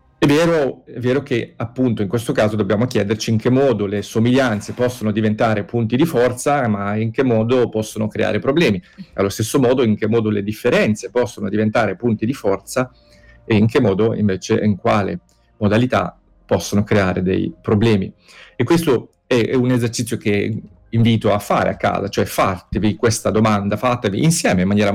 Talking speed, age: 175 wpm, 40-59